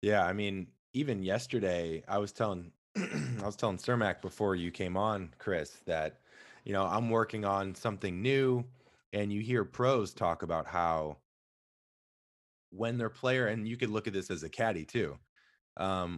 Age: 20-39